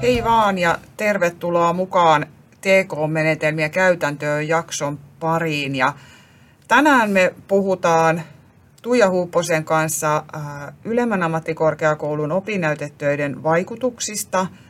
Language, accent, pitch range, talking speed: Finnish, native, 145-180 Hz, 80 wpm